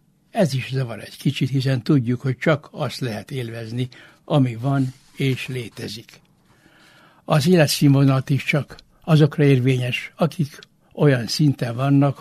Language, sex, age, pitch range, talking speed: Hungarian, male, 60-79, 125-150 Hz, 130 wpm